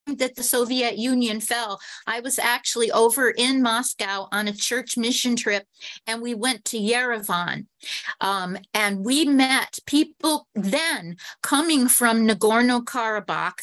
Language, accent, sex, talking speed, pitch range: English, American, female, 130 wpm, 200-245 Hz